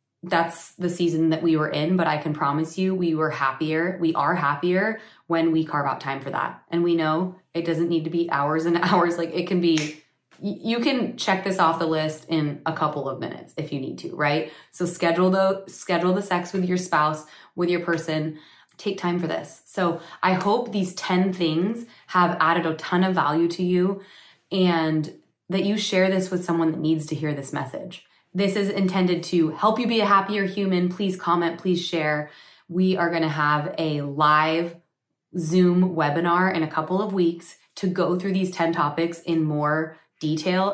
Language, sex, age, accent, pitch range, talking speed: English, female, 20-39, American, 155-185 Hz, 200 wpm